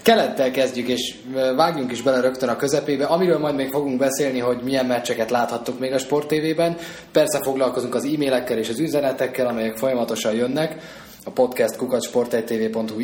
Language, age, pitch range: Hungarian, 20-39, 110-135 Hz